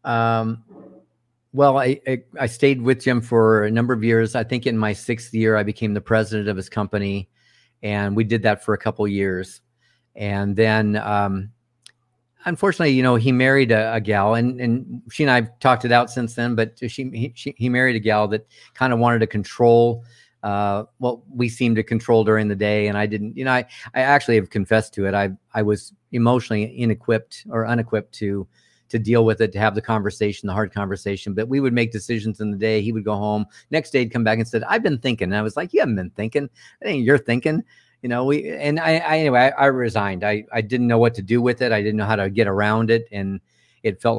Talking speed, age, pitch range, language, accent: 235 wpm, 50-69, 105-125 Hz, English, American